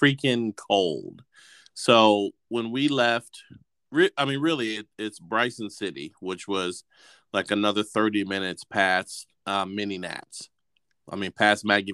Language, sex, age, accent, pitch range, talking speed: English, male, 30-49, American, 95-120 Hz, 130 wpm